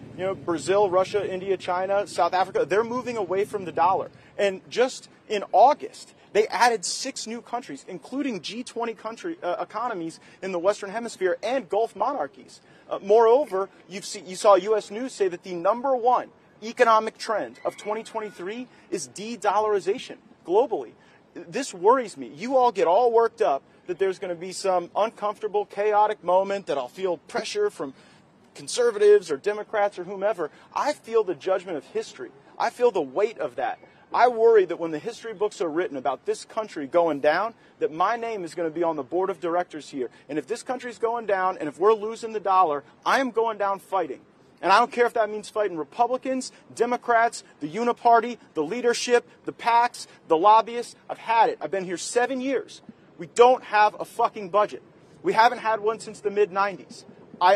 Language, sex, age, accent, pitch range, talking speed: English, male, 40-59, American, 190-240 Hz, 185 wpm